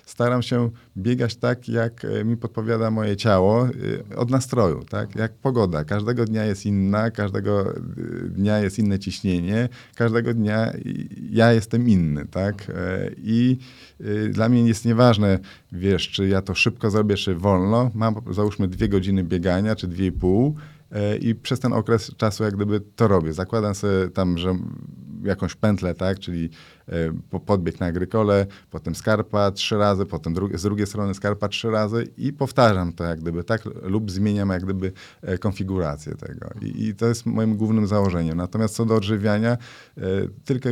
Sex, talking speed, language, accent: male, 160 wpm, Polish, native